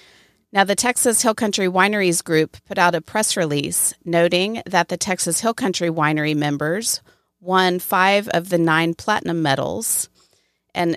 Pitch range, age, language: 160-185 Hz, 40-59, English